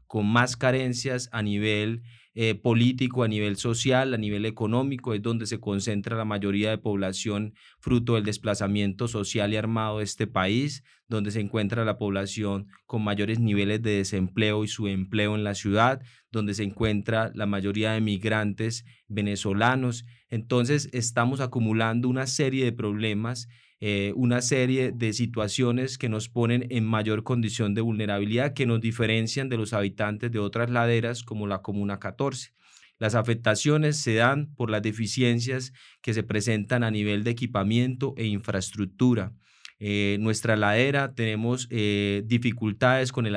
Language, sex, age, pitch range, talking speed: Spanish, male, 20-39, 105-125 Hz, 155 wpm